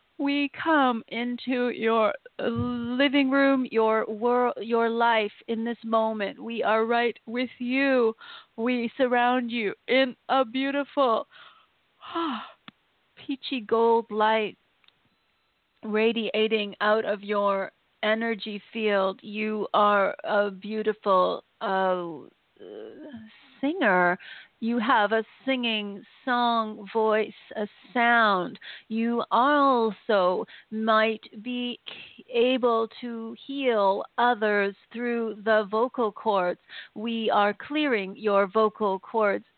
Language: English